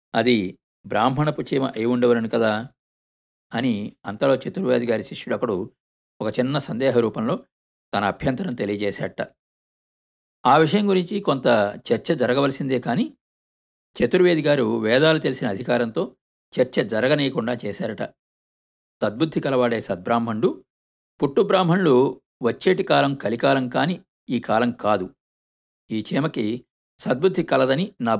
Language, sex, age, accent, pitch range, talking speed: Telugu, male, 50-69, native, 110-150 Hz, 105 wpm